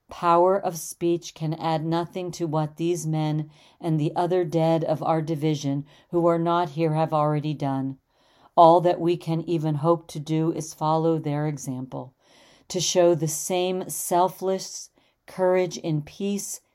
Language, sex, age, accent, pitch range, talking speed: English, female, 40-59, American, 150-170 Hz, 160 wpm